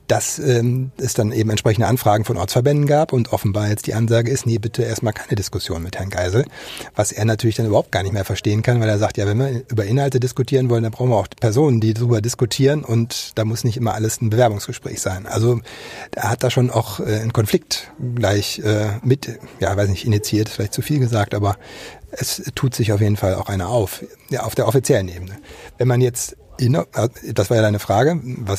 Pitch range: 105-125 Hz